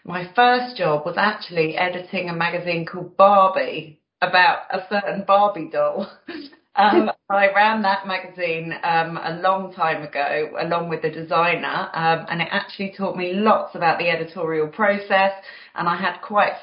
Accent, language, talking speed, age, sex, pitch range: British, English, 160 wpm, 30-49, female, 165-200 Hz